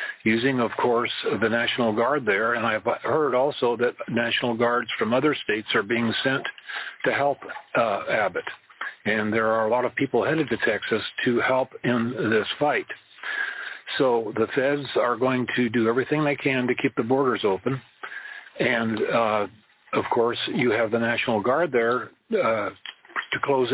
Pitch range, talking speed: 115-135 Hz, 170 wpm